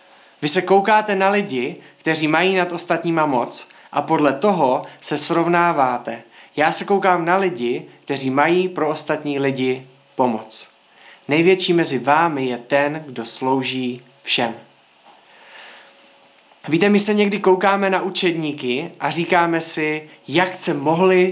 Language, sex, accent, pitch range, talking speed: Czech, male, native, 135-185 Hz, 130 wpm